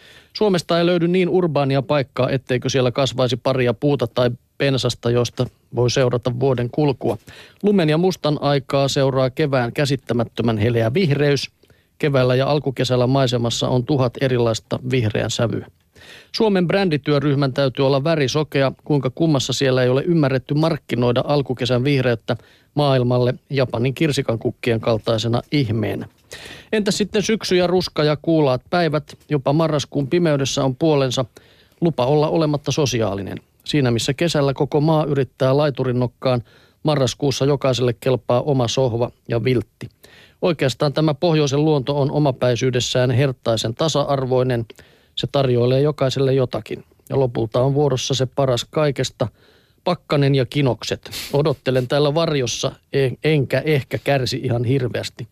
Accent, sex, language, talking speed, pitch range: native, male, Finnish, 125 wpm, 125-150 Hz